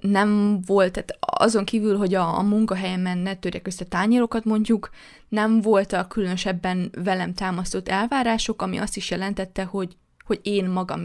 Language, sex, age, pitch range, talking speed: Hungarian, female, 20-39, 185-210 Hz, 150 wpm